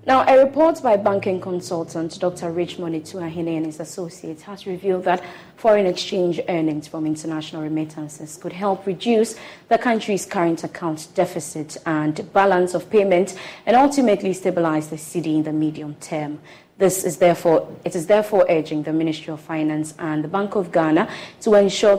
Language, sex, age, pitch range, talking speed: English, female, 20-39, 160-195 Hz, 165 wpm